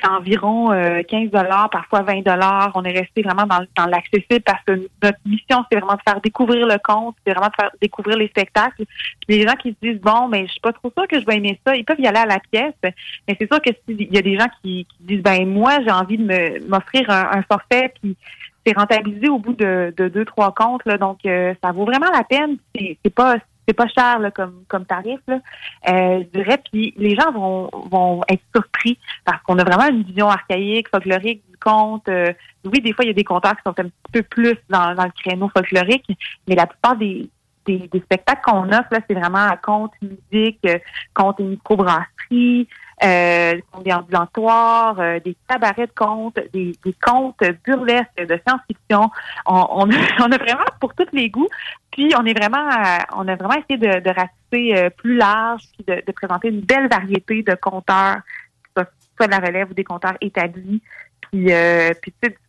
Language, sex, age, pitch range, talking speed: French, female, 30-49, 185-230 Hz, 220 wpm